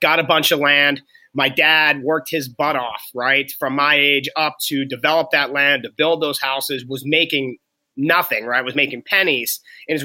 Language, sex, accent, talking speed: English, male, American, 195 wpm